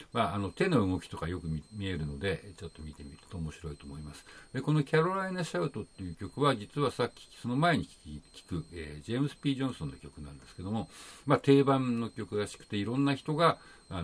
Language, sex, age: Japanese, male, 60-79